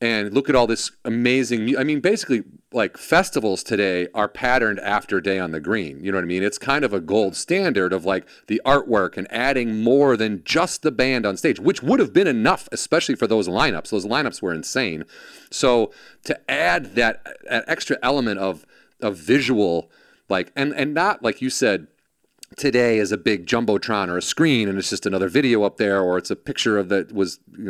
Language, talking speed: English, 205 wpm